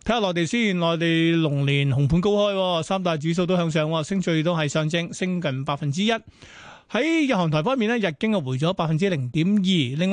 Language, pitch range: Chinese, 160-200 Hz